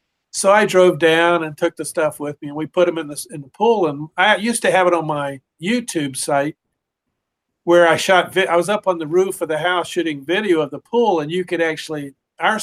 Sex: male